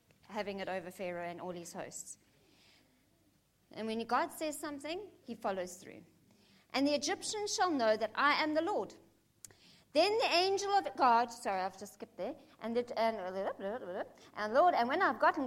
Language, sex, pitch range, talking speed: English, female, 215-315 Hz, 165 wpm